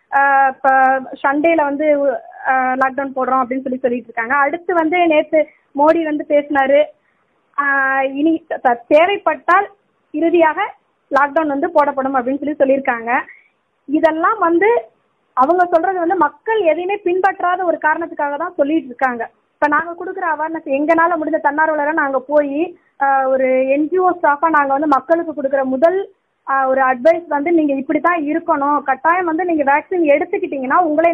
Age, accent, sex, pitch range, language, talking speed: 20-39, native, female, 275-325 Hz, Tamil, 80 wpm